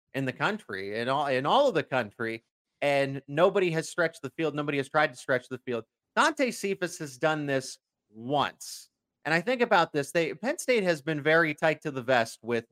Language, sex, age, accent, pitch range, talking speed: English, male, 30-49, American, 130-180 Hz, 210 wpm